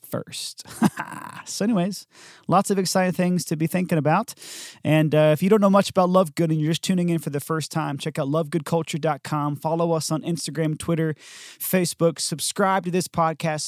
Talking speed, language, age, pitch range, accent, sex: 190 wpm, English, 30-49, 135-165 Hz, American, male